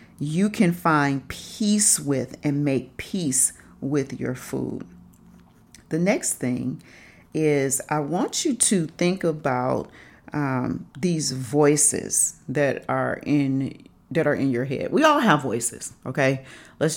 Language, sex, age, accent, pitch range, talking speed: English, female, 40-59, American, 135-170 Hz, 135 wpm